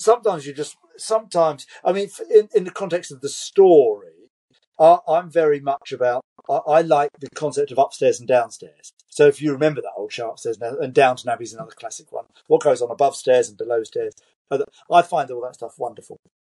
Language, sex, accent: English, male, British